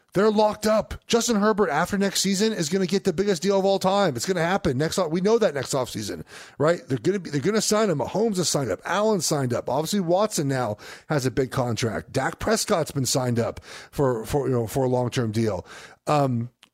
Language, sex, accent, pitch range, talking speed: English, male, American, 130-195 Hz, 245 wpm